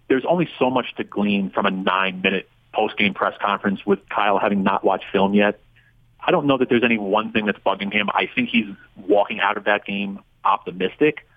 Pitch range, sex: 100-125 Hz, male